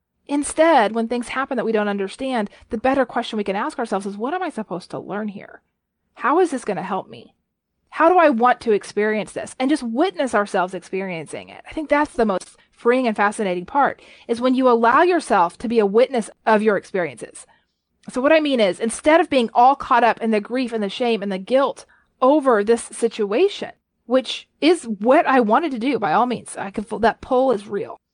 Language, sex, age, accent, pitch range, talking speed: English, female, 30-49, American, 220-295 Hz, 220 wpm